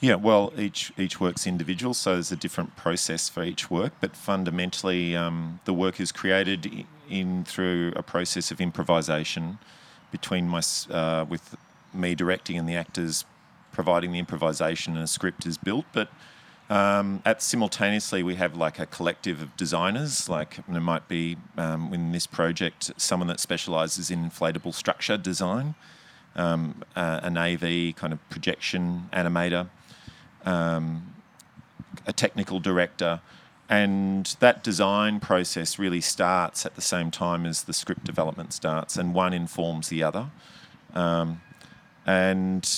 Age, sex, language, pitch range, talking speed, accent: 30-49, male, English, 85-95 Hz, 145 wpm, Australian